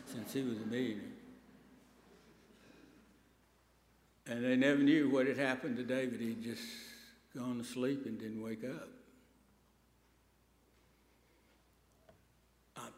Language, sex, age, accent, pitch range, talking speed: English, male, 60-79, American, 125-170 Hz, 110 wpm